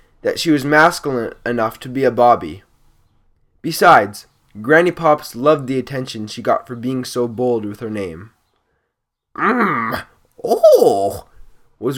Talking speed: 140 wpm